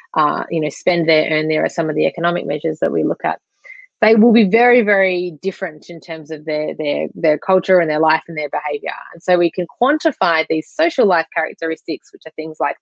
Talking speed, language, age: 230 wpm, English, 20-39